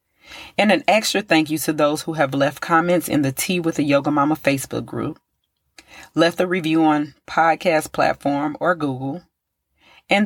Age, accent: 30-49, American